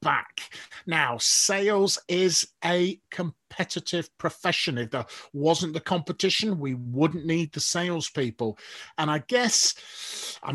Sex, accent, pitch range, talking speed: male, British, 160-190 Hz, 120 wpm